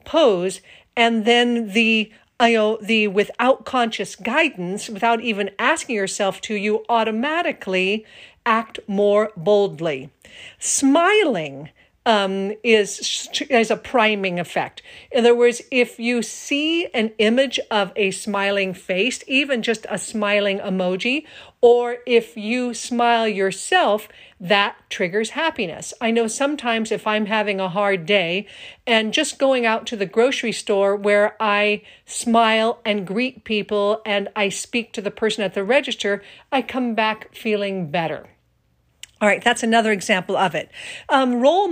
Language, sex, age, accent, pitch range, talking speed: English, female, 50-69, American, 205-240 Hz, 140 wpm